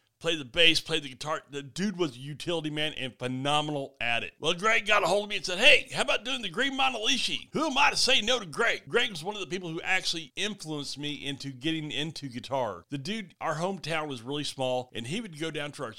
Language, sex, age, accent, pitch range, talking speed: English, male, 40-59, American, 135-205 Hz, 255 wpm